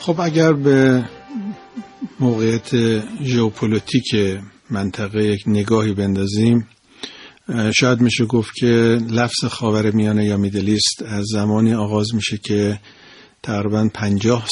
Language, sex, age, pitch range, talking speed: Persian, male, 50-69, 100-115 Hz, 100 wpm